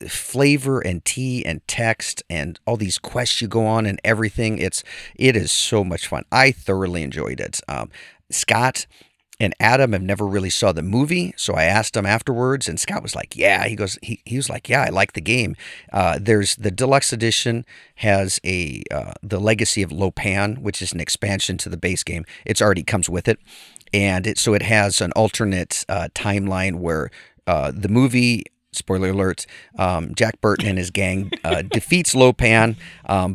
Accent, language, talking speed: American, English, 185 wpm